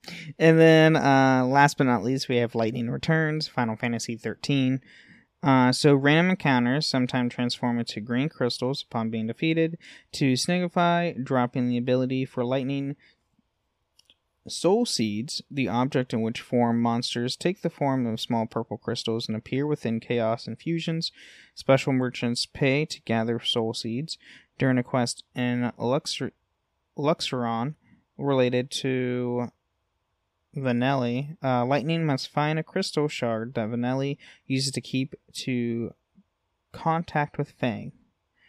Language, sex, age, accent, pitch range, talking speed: English, male, 20-39, American, 115-145 Hz, 135 wpm